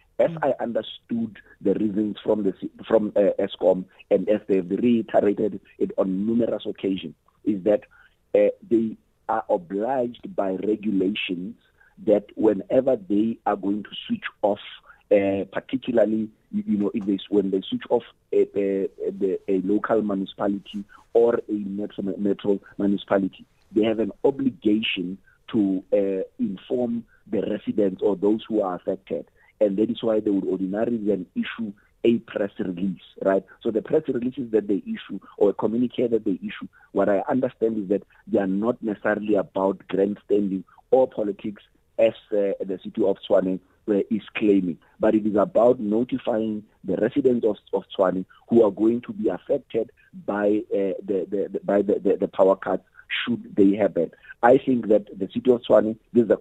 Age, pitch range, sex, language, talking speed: 50-69, 100-115 Hz, male, English, 165 wpm